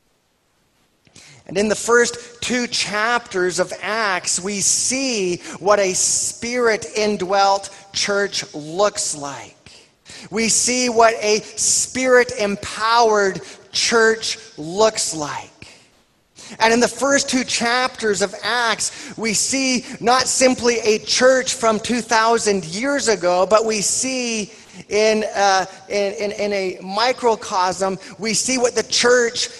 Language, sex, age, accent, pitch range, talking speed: English, male, 30-49, American, 190-235 Hz, 115 wpm